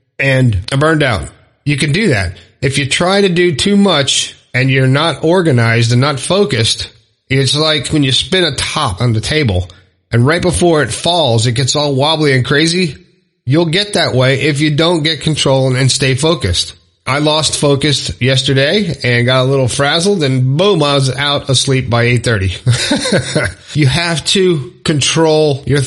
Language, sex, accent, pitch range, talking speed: English, male, American, 125-155 Hz, 180 wpm